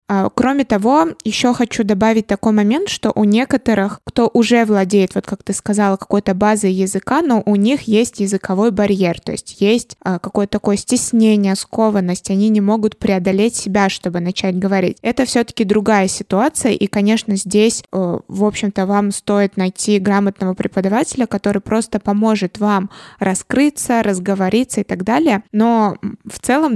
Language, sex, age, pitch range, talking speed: Russian, female, 20-39, 200-235 Hz, 150 wpm